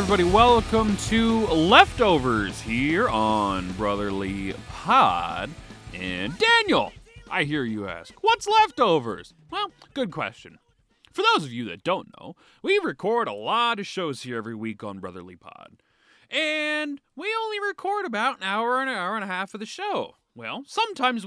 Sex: male